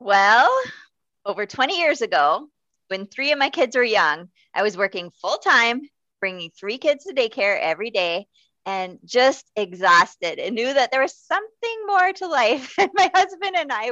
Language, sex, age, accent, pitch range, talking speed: English, female, 20-39, American, 185-270 Hz, 175 wpm